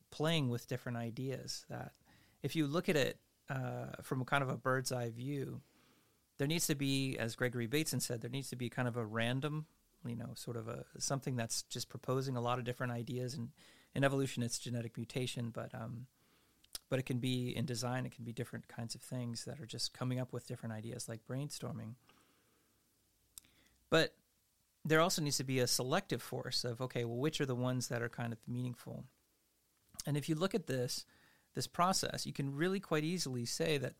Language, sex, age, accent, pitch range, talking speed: Danish, male, 30-49, American, 120-140 Hz, 205 wpm